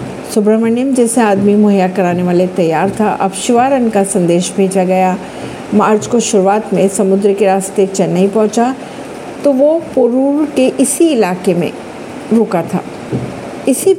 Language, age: Hindi, 50-69